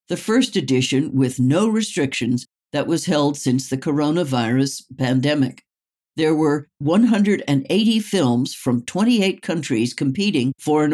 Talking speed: 125 wpm